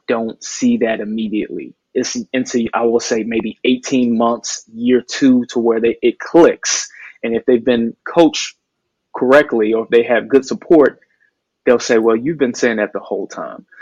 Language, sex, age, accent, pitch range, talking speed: English, male, 20-39, American, 110-130 Hz, 180 wpm